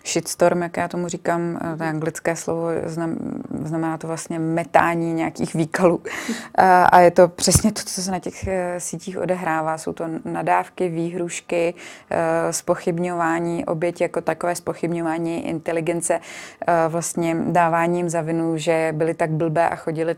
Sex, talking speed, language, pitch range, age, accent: female, 145 wpm, Czech, 165-180 Hz, 20-39, native